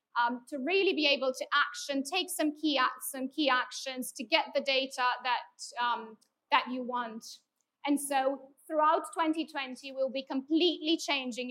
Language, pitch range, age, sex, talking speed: English, 250-295 Hz, 30-49, female, 160 wpm